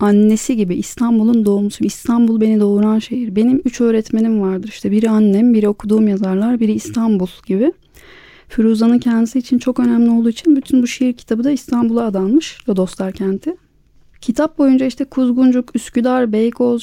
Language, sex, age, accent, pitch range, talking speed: Turkish, female, 30-49, native, 210-245 Hz, 155 wpm